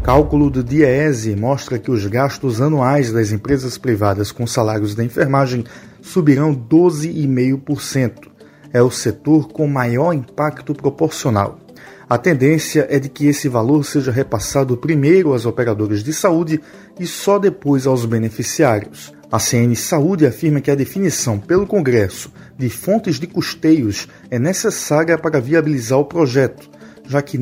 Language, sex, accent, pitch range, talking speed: Portuguese, male, Brazilian, 125-165 Hz, 140 wpm